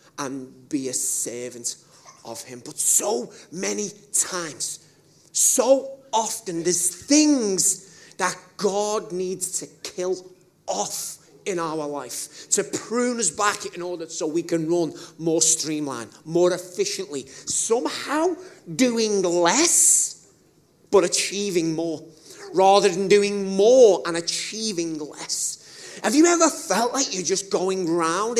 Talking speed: 125 wpm